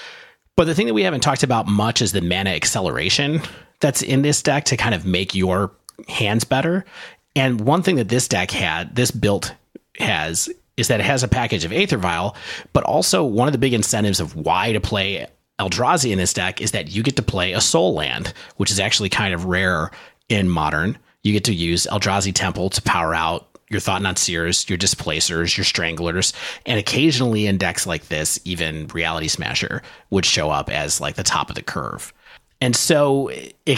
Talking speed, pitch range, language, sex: 200 wpm, 90-125 Hz, English, male